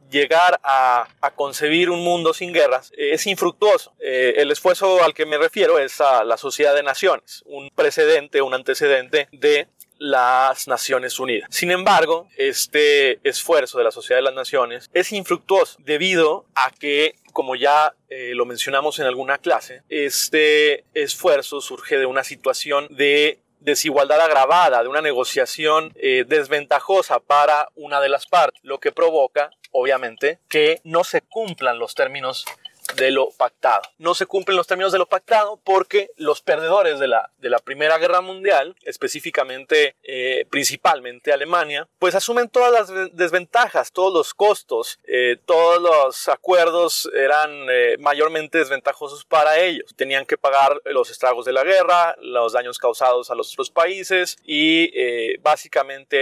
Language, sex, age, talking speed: Spanish, male, 30-49, 155 wpm